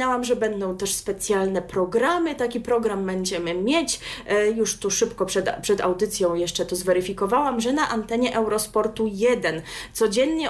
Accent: native